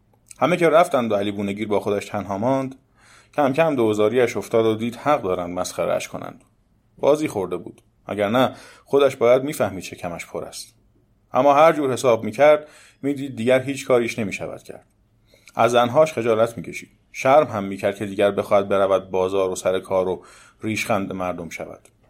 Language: Persian